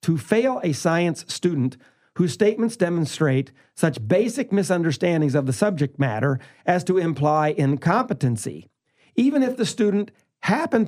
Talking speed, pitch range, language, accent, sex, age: 130 wpm, 145-180 Hz, English, American, male, 50-69